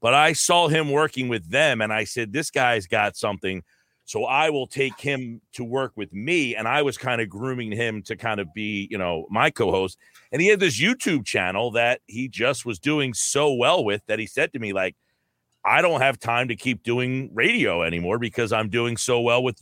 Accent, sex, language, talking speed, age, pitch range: American, male, English, 225 wpm, 40-59, 105-140 Hz